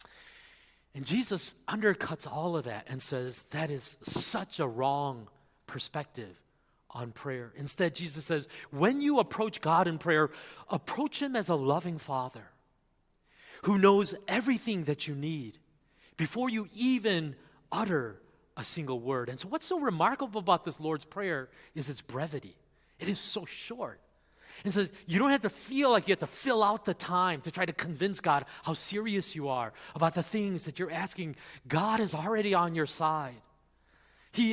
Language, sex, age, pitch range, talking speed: English, male, 30-49, 130-195 Hz, 170 wpm